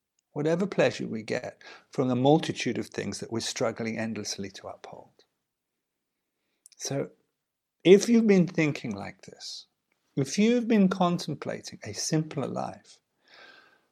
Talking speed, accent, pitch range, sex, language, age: 125 wpm, British, 130-185 Hz, male, English, 50-69